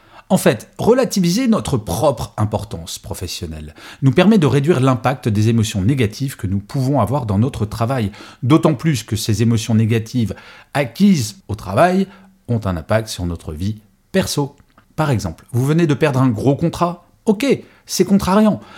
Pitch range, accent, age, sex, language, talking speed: 105-165 Hz, French, 40-59, male, French, 160 wpm